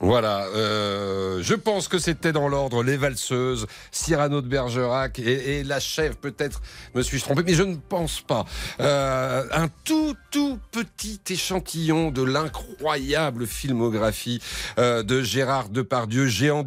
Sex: male